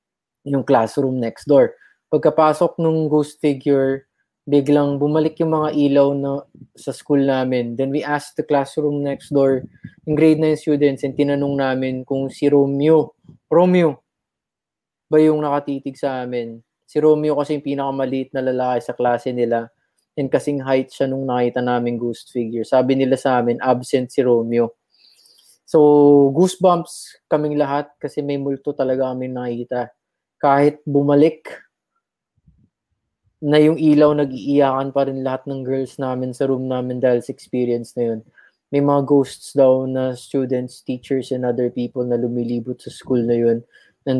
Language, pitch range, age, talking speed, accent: Filipino, 125-145 Hz, 20-39, 150 wpm, native